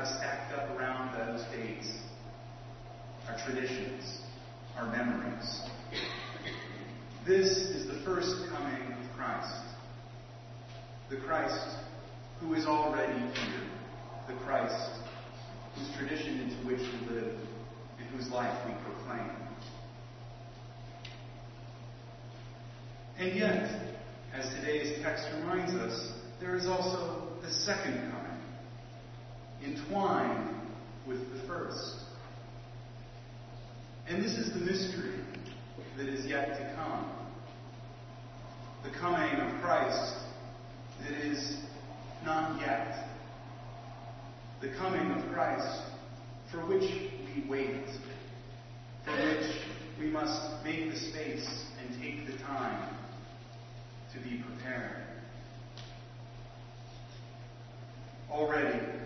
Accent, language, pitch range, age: American, English, 115-140 Hz, 40-59